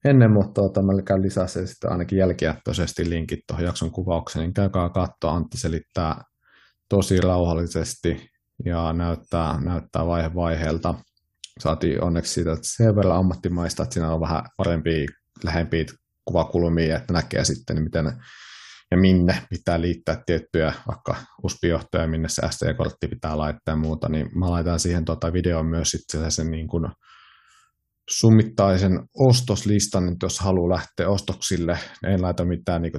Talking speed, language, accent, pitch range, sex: 125 wpm, Finnish, native, 80-95 Hz, male